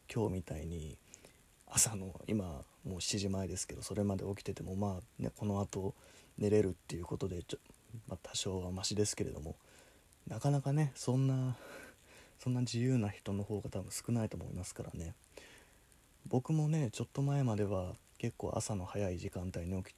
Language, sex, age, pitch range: Japanese, male, 20-39, 95-120 Hz